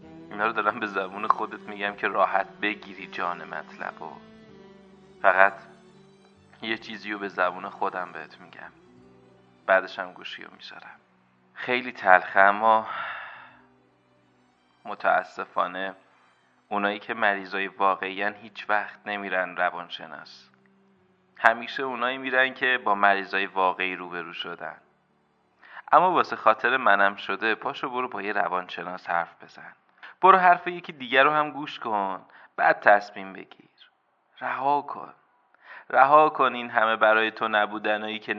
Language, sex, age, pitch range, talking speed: Persian, male, 30-49, 100-125 Hz, 125 wpm